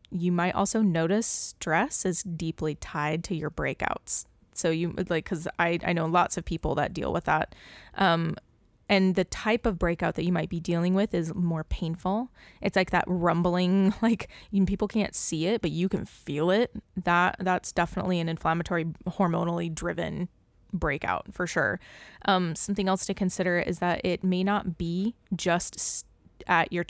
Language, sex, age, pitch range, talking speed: English, female, 20-39, 170-195 Hz, 180 wpm